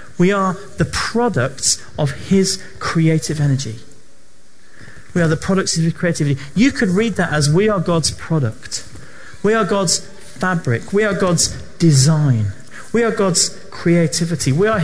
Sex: male